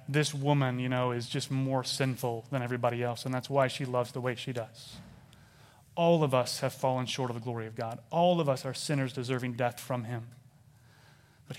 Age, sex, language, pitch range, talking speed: 30-49, male, English, 125-145 Hz, 210 wpm